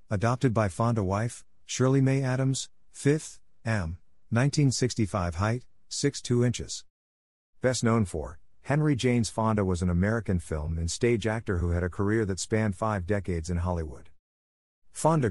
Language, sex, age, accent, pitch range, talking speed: English, male, 50-69, American, 85-115 Hz, 140 wpm